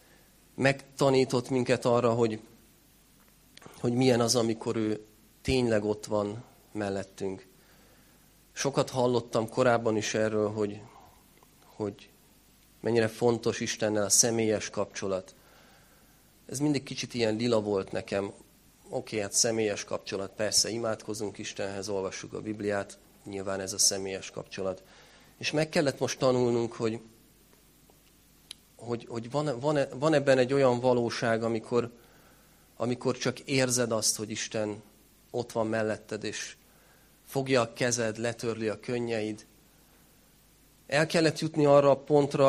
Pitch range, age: 110-130 Hz, 40-59